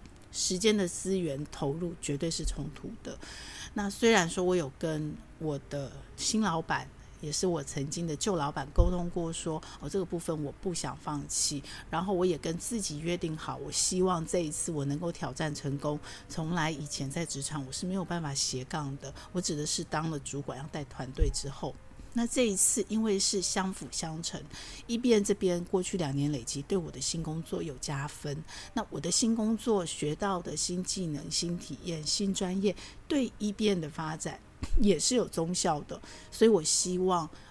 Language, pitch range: Chinese, 150-185 Hz